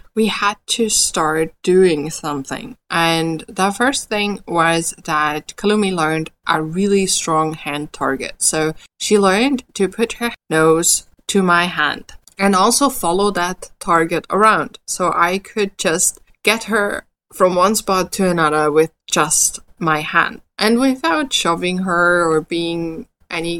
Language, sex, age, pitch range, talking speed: English, female, 20-39, 165-215 Hz, 145 wpm